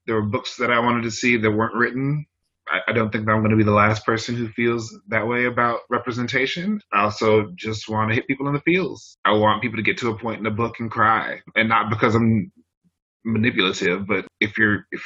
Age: 30-49